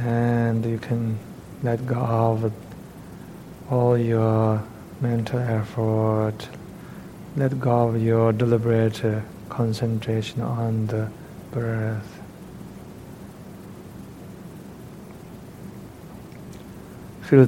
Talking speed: 70 wpm